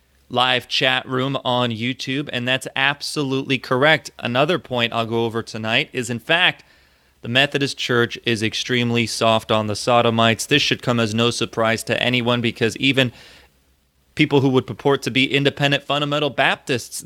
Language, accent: English, American